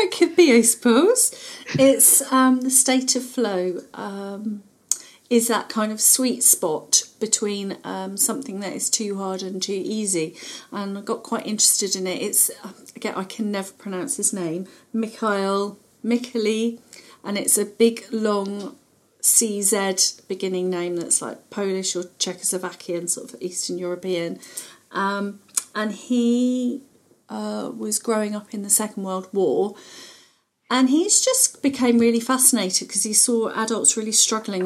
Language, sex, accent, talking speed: English, female, British, 145 wpm